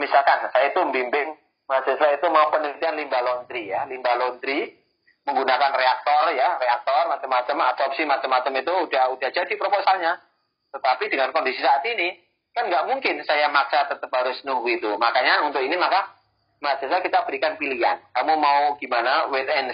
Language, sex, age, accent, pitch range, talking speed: Indonesian, male, 30-49, native, 130-170 Hz, 160 wpm